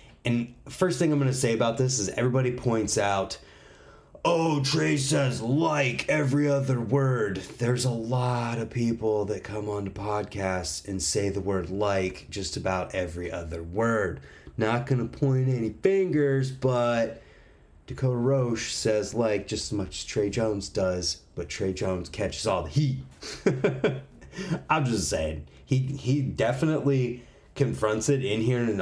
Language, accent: English, American